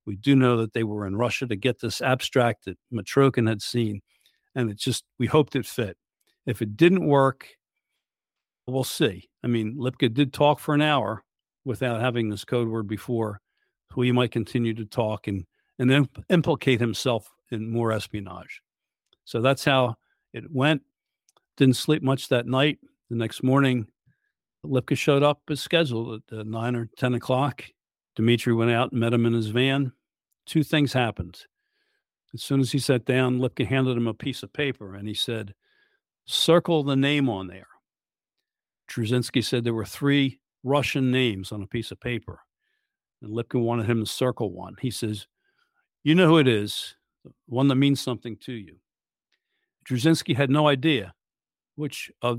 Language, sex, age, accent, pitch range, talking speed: English, male, 50-69, American, 115-135 Hz, 175 wpm